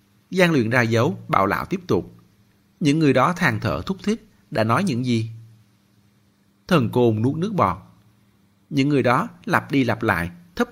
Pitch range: 100-135 Hz